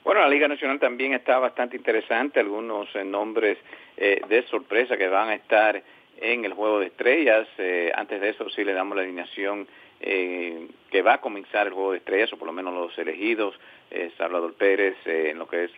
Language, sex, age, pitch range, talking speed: English, male, 50-69, 90-130 Hz, 210 wpm